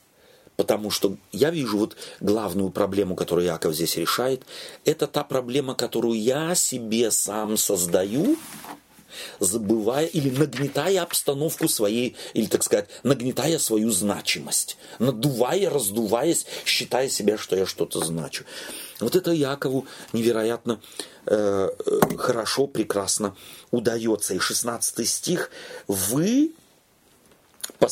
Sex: male